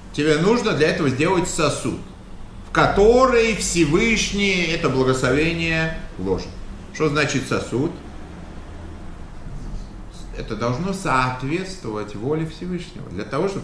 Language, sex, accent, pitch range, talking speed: Russian, male, native, 140-205 Hz, 100 wpm